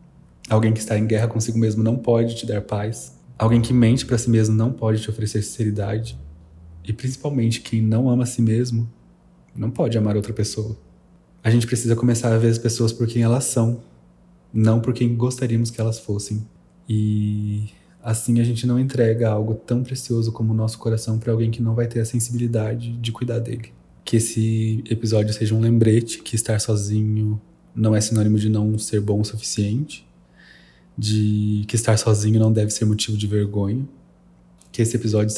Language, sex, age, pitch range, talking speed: Portuguese, male, 20-39, 105-115 Hz, 185 wpm